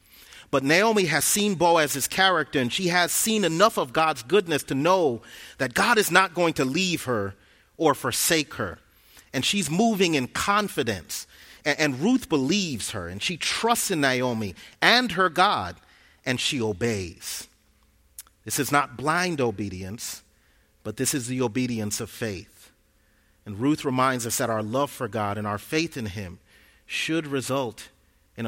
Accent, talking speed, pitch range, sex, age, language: American, 160 wpm, 105-150 Hz, male, 30-49, English